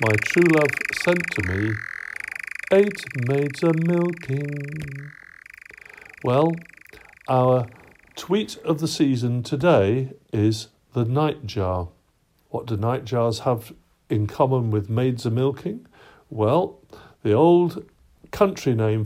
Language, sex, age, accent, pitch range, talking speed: English, male, 50-69, British, 110-145 Hz, 105 wpm